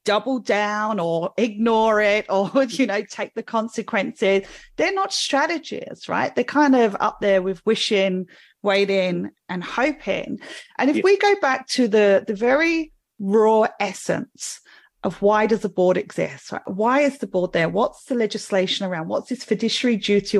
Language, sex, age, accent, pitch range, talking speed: English, female, 40-59, British, 195-275 Hz, 165 wpm